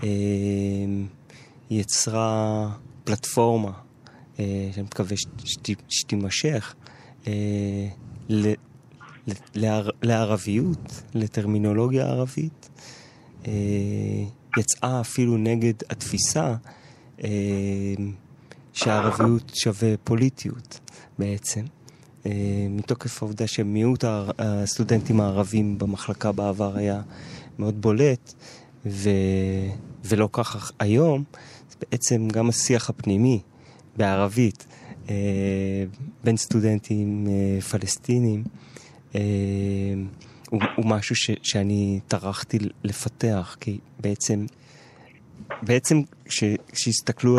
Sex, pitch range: male, 105-125 Hz